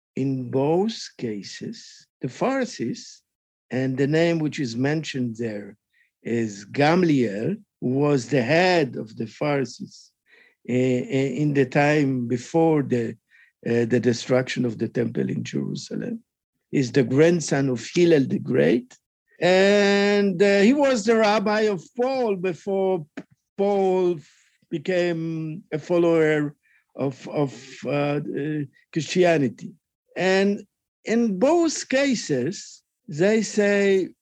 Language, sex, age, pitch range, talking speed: English, male, 50-69, 145-205 Hz, 110 wpm